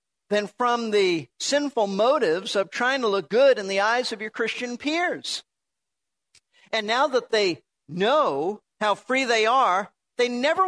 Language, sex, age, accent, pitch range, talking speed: English, male, 50-69, American, 180-245 Hz, 155 wpm